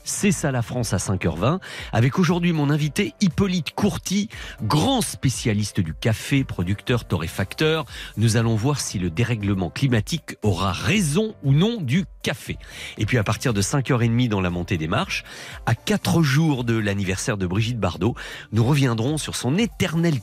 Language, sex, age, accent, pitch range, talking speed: French, male, 40-59, French, 100-155 Hz, 165 wpm